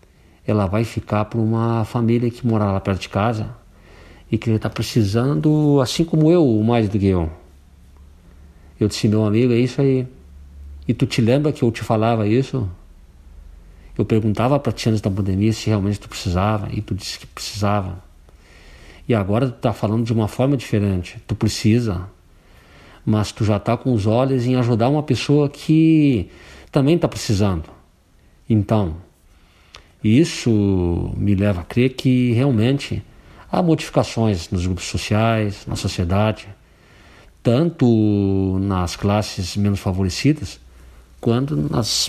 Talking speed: 150 wpm